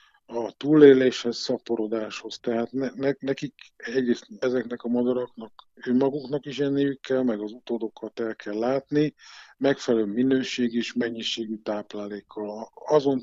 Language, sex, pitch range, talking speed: Hungarian, male, 110-130 Hz, 115 wpm